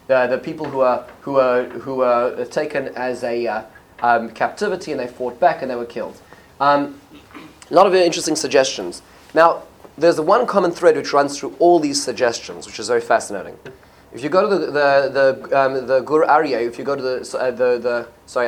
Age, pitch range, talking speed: 20-39, 130-185 Hz, 215 wpm